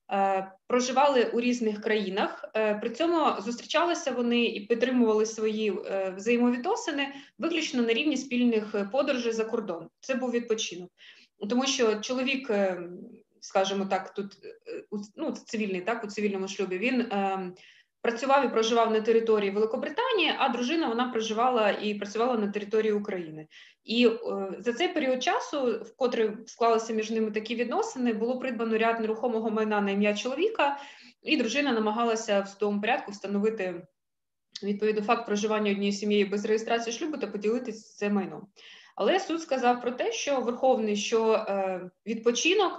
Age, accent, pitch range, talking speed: 20-39, native, 205-250 Hz, 140 wpm